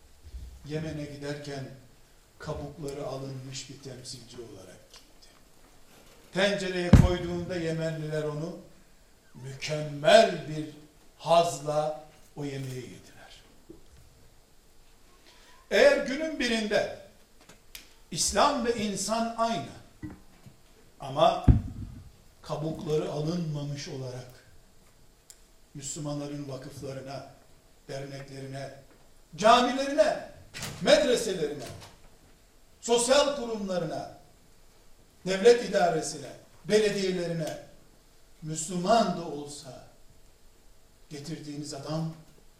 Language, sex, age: Turkish, male, 60-79